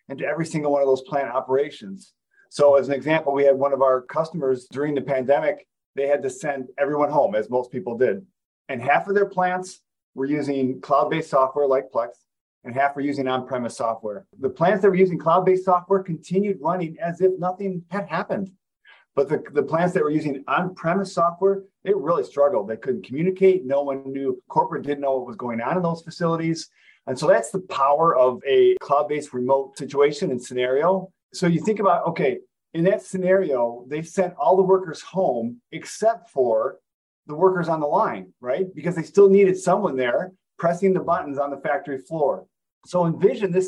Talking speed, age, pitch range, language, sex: 190 wpm, 40-59, 140-190 Hz, English, male